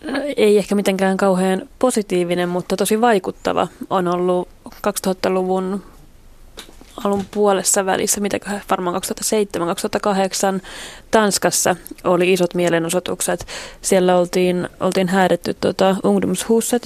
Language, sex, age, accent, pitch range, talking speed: Finnish, female, 20-39, native, 180-200 Hz, 90 wpm